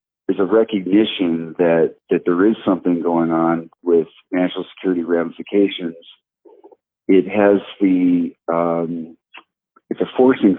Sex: male